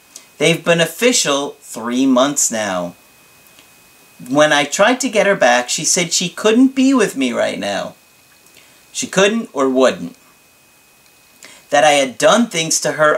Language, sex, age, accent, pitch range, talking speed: English, male, 40-59, American, 115-175 Hz, 150 wpm